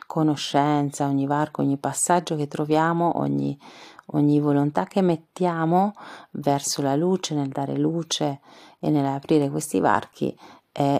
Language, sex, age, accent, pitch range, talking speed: Italian, female, 40-59, native, 135-155 Hz, 120 wpm